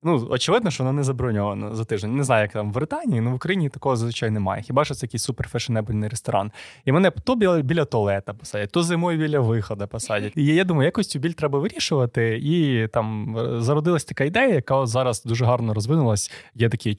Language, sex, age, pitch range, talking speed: Ukrainian, male, 20-39, 110-140 Hz, 210 wpm